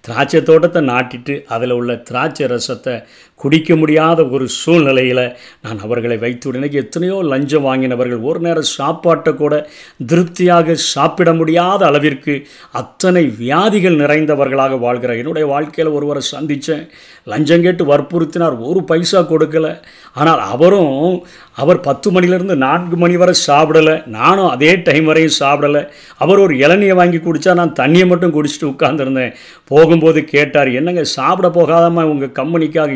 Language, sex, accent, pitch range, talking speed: Tamil, male, native, 130-165 Hz, 125 wpm